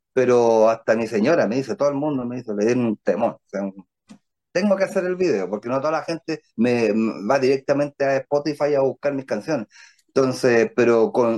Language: Spanish